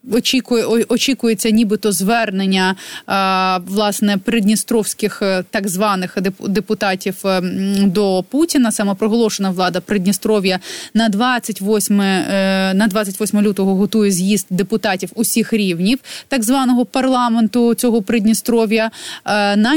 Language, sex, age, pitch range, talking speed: Ukrainian, female, 20-39, 195-235 Hz, 95 wpm